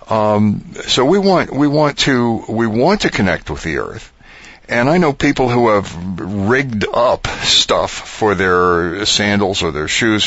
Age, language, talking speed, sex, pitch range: 60-79, English, 170 wpm, male, 90-115 Hz